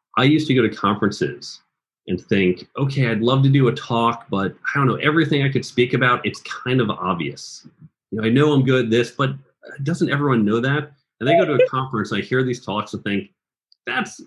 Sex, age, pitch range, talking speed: male, 40-59, 100-135 Hz, 225 wpm